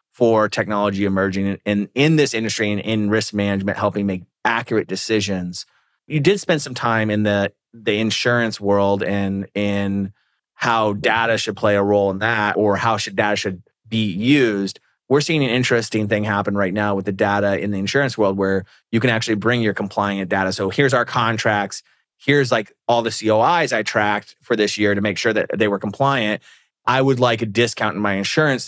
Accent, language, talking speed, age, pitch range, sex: American, English, 200 wpm, 30-49, 100-120 Hz, male